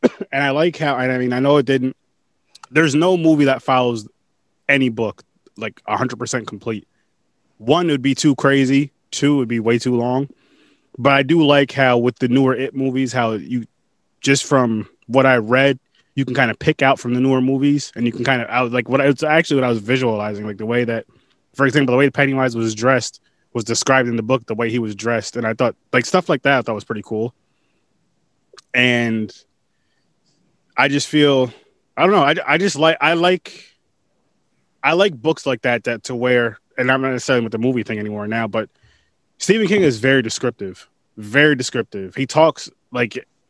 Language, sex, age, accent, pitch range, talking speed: English, male, 20-39, American, 120-145 Hz, 205 wpm